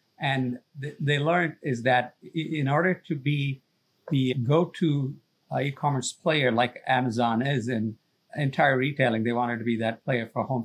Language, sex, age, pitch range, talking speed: English, male, 50-69, 125-150 Hz, 150 wpm